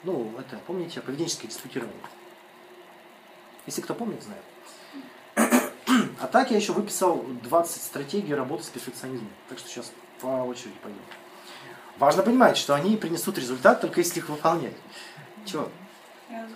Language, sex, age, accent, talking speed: Russian, male, 30-49, native, 130 wpm